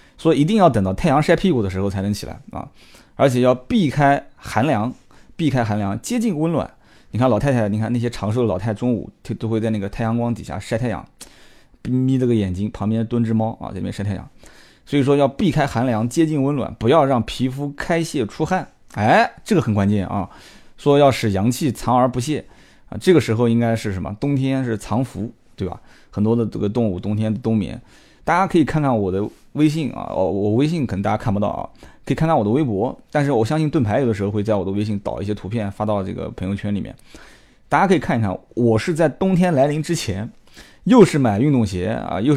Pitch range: 105-140 Hz